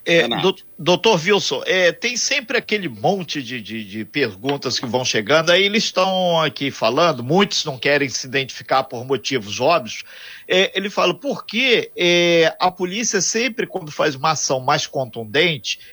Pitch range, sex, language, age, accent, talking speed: 150-220 Hz, male, Portuguese, 50-69, Brazilian, 160 wpm